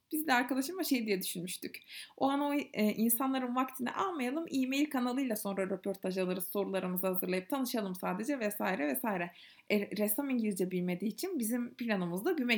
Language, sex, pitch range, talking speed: Turkish, female, 210-290 Hz, 150 wpm